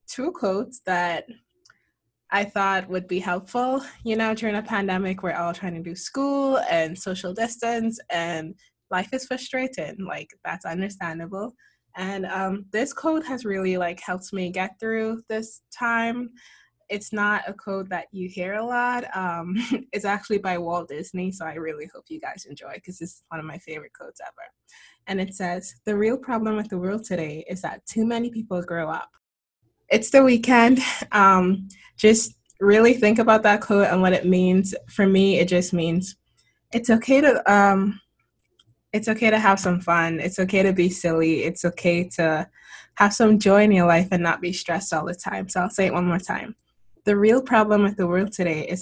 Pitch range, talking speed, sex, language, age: 175-220 Hz, 190 wpm, female, English, 20-39